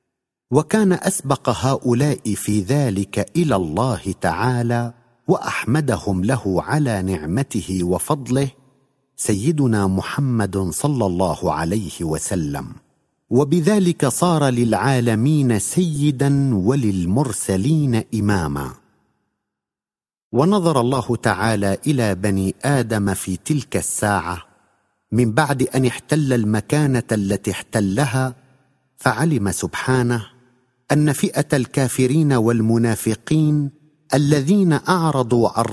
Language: Arabic